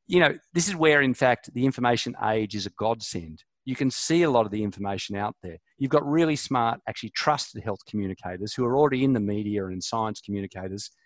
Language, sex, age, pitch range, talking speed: English, male, 50-69, 105-140 Hz, 215 wpm